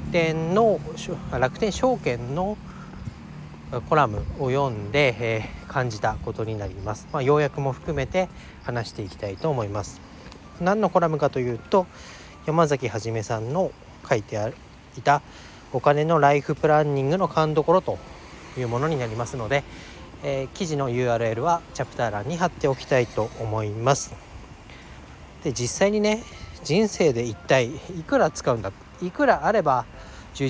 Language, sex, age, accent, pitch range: Japanese, male, 40-59, native, 110-160 Hz